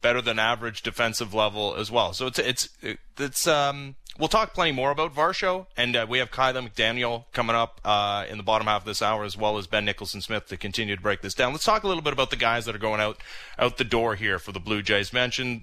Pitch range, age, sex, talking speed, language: 120-160 Hz, 30-49, male, 255 wpm, English